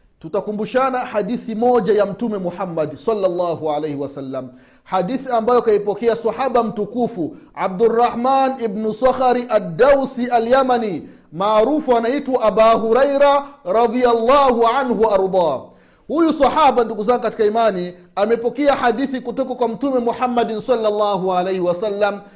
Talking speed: 105 wpm